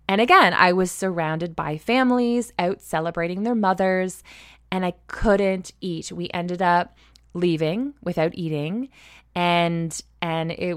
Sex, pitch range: female, 170-205 Hz